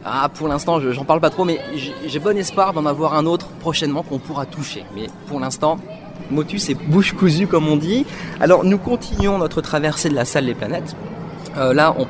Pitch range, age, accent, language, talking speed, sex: 130-180 Hz, 30-49, French, French, 210 wpm, male